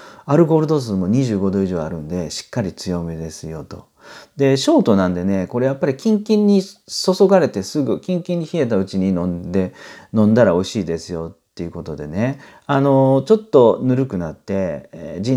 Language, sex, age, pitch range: Japanese, male, 40-59, 85-130 Hz